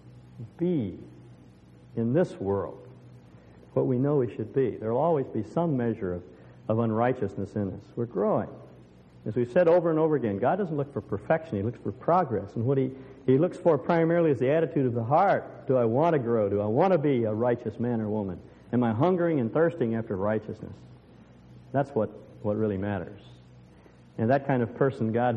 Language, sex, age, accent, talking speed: English, male, 50-69, American, 200 wpm